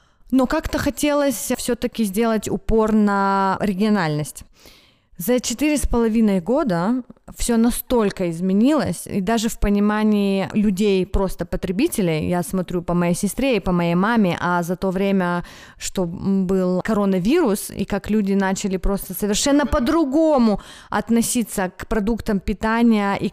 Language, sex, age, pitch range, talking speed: Russian, female, 20-39, 190-230 Hz, 130 wpm